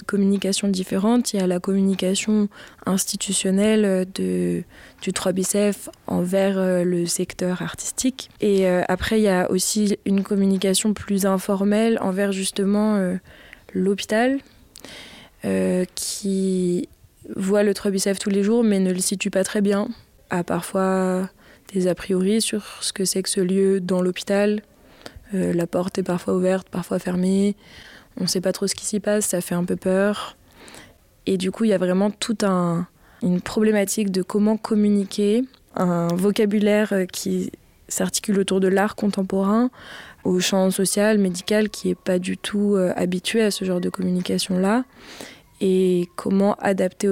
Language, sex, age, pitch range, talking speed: English, female, 20-39, 185-205 Hz, 155 wpm